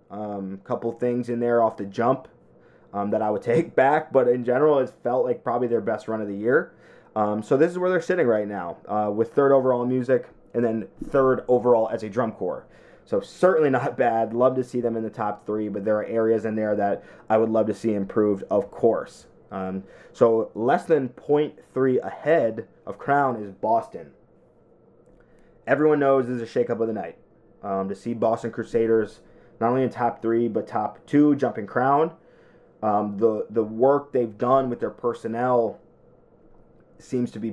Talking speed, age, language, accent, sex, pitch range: 195 wpm, 20-39, English, American, male, 105-125 Hz